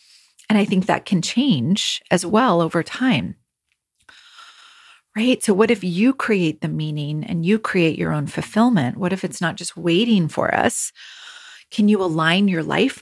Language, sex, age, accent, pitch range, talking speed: English, female, 40-59, American, 170-210 Hz, 170 wpm